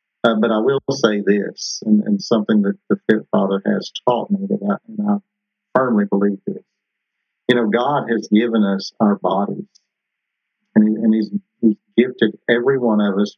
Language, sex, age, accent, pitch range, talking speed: English, male, 50-69, American, 105-165 Hz, 175 wpm